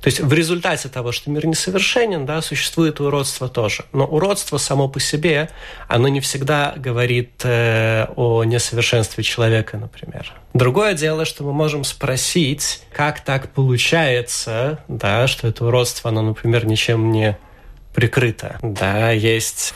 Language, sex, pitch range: Russian, male, 115-145 Hz